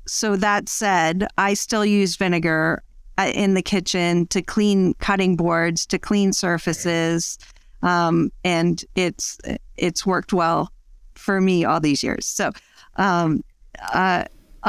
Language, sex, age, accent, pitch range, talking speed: English, female, 40-59, American, 180-215 Hz, 125 wpm